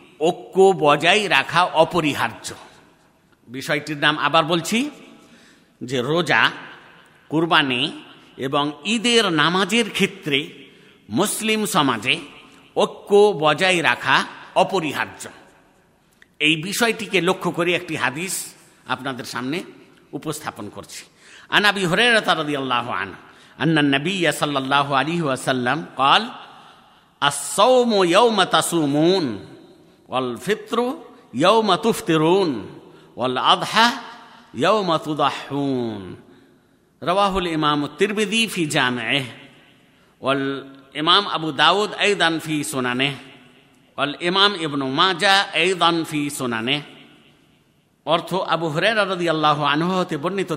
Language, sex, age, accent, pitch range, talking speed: Bengali, male, 50-69, native, 140-195 Hz, 35 wpm